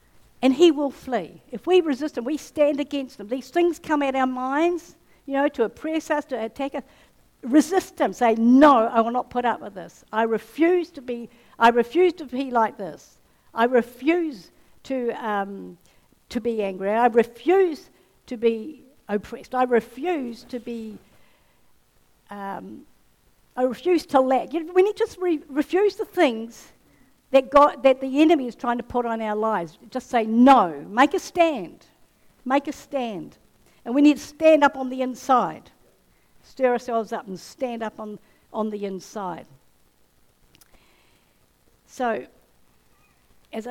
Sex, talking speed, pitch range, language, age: female, 160 wpm, 225-290 Hz, English, 60-79